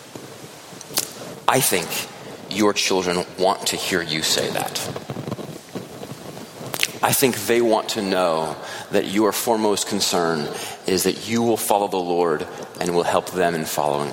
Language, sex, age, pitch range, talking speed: English, male, 30-49, 110-145 Hz, 140 wpm